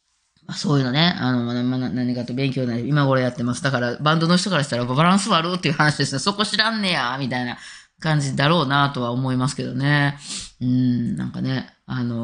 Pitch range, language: 130-185 Hz, Japanese